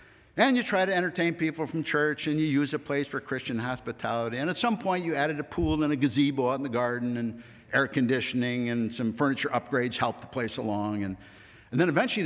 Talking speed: 225 wpm